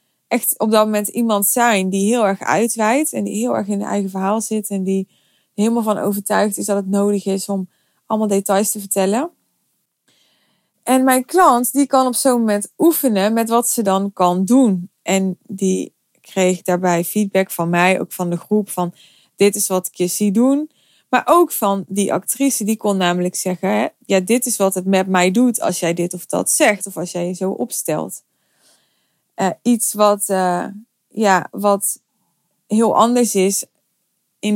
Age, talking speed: 20-39, 185 wpm